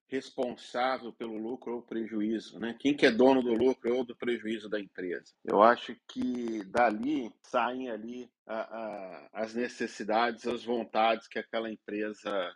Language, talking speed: Portuguese, 155 wpm